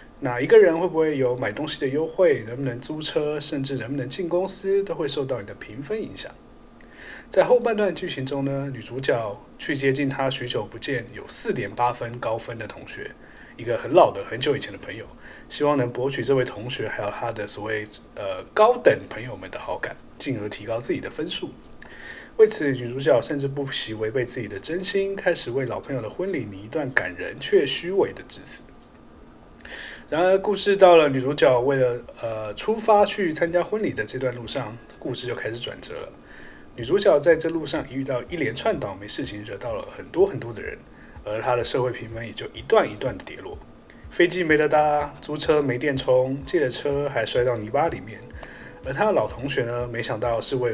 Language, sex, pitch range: Chinese, male, 120-165 Hz